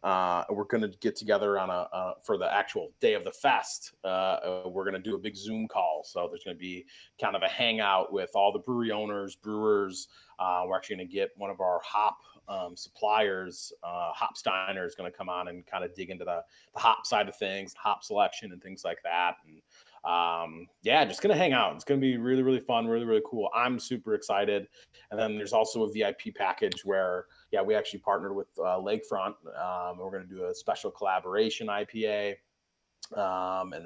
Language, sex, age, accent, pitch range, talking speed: English, male, 30-49, American, 95-125 Hz, 215 wpm